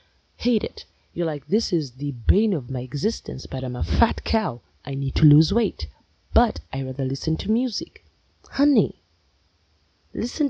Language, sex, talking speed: English, female, 165 wpm